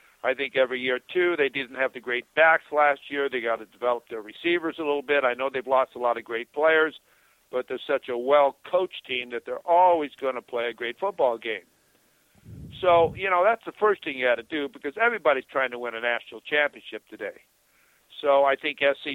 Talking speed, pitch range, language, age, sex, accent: 225 wpm, 130-160 Hz, English, 60-79, male, American